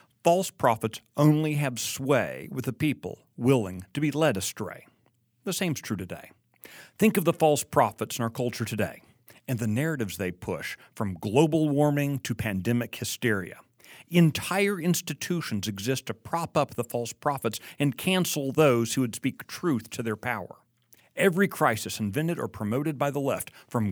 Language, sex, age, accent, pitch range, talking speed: English, male, 60-79, American, 115-160 Hz, 165 wpm